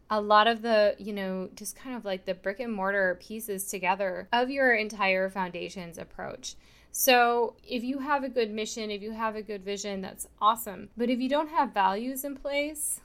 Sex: female